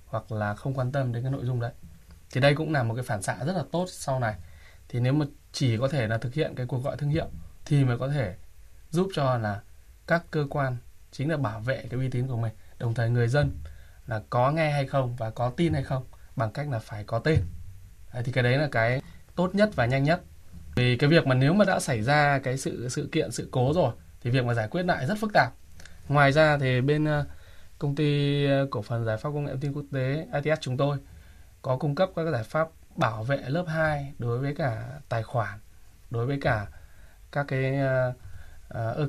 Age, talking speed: 20-39, 230 wpm